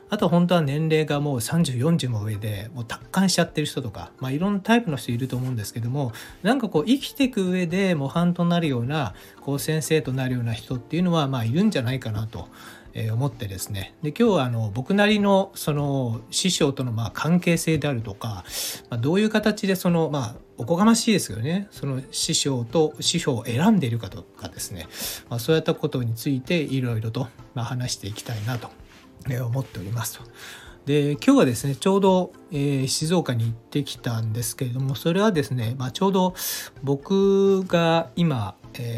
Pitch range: 115-170 Hz